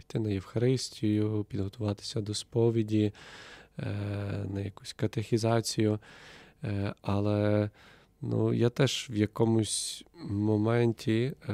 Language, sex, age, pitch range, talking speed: Ukrainian, male, 20-39, 100-115 Hz, 80 wpm